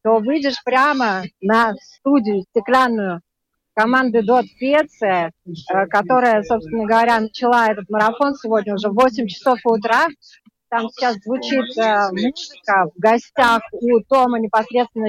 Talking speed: 120 wpm